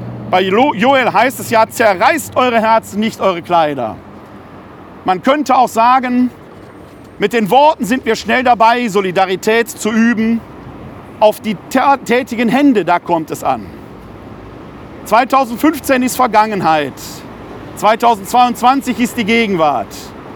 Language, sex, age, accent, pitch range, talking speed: German, male, 40-59, German, 185-245 Hz, 120 wpm